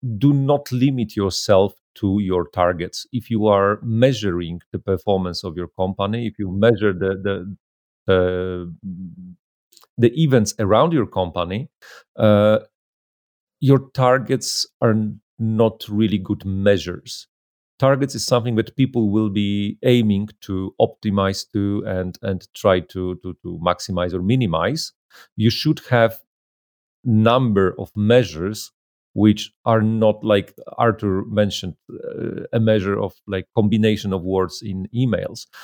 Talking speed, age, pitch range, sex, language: 130 wpm, 40-59, 95-115 Hz, male, English